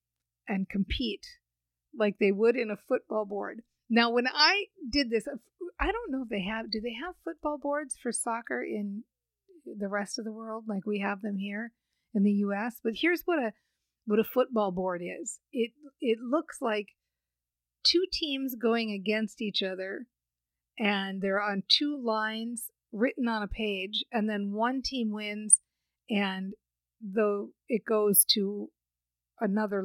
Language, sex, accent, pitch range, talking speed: English, female, American, 195-255 Hz, 160 wpm